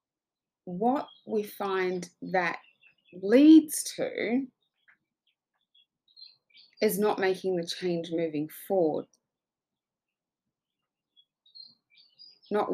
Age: 20-39